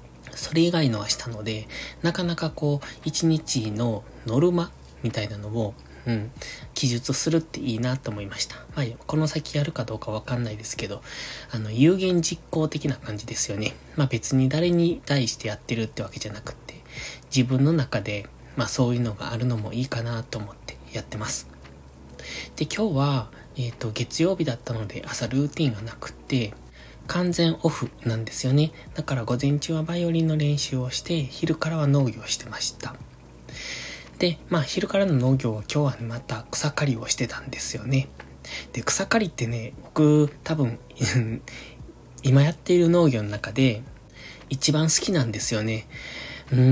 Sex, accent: male, native